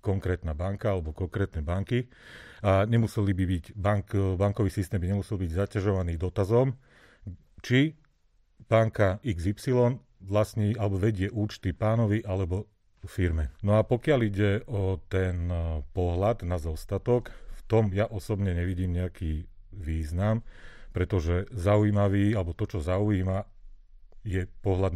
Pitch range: 90-105 Hz